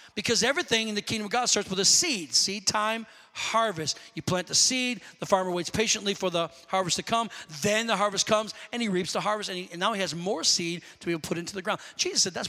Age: 40-59